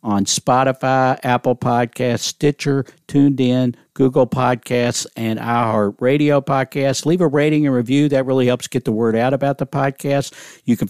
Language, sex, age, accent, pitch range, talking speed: English, male, 50-69, American, 110-135 Hz, 165 wpm